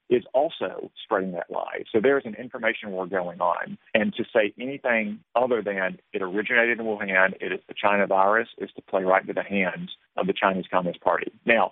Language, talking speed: English, 205 wpm